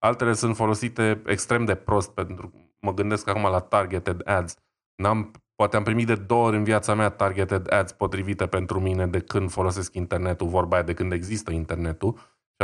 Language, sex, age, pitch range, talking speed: Romanian, male, 20-39, 95-115 Hz, 185 wpm